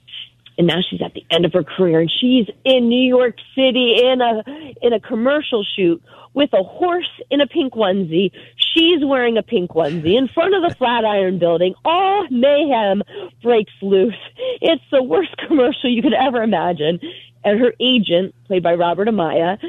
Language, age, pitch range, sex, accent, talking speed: English, 40-59, 170-250 Hz, female, American, 175 wpm